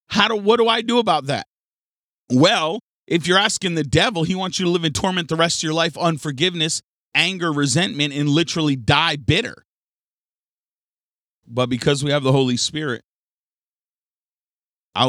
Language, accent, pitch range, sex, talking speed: English, American, 100-145 Hz, male, 165 wpm